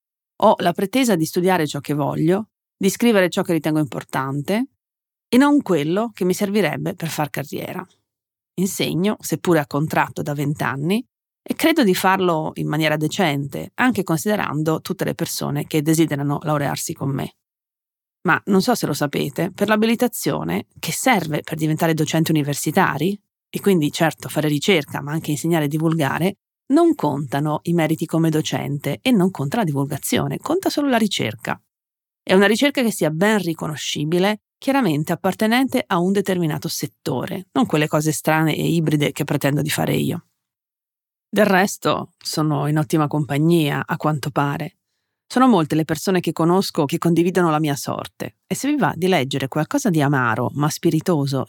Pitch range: 150-195 Hz